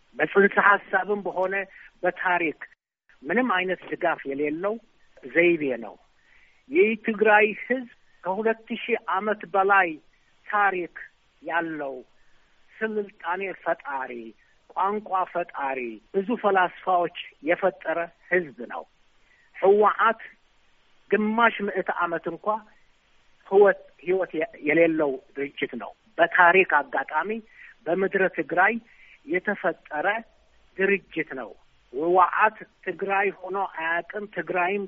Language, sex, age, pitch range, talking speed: Amharic, male, 60-79, 165-210 Hz, 85 wpm